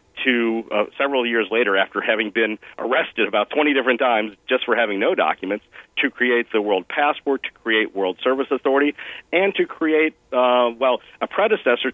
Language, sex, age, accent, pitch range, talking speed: English, male, 40-59, American, 110-135 Hz, 175 wpm